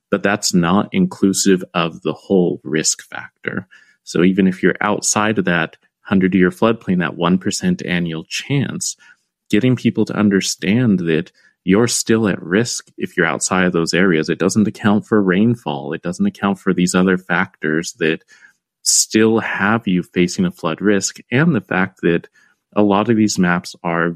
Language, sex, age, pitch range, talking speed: English, male, 30-49, 90-105 Hz, 165 wpm